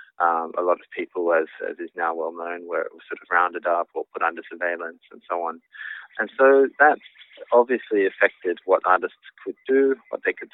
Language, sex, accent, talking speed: English, male, Australian, 200 wpm